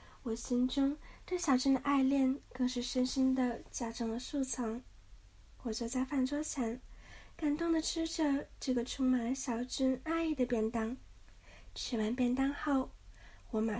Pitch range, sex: 235-280 Hz, female